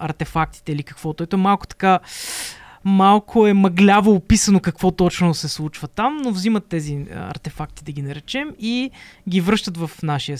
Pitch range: 160-200 Hz